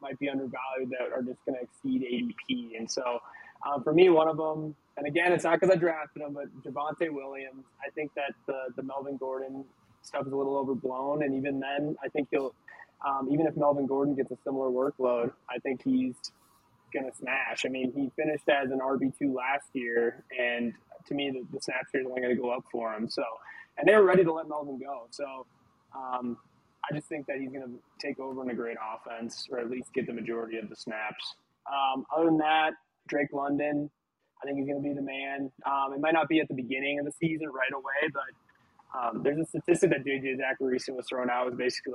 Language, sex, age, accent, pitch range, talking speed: English, male, 20-39, American, 125-145 Hz, 225 wpm